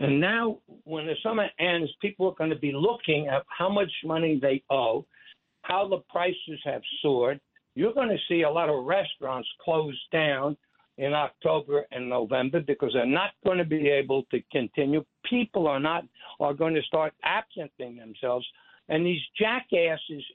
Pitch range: 145-185 Hz